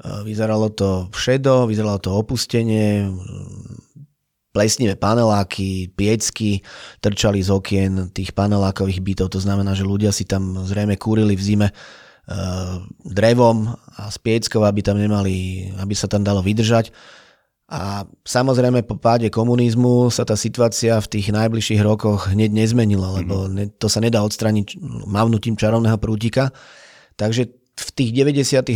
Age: 30-49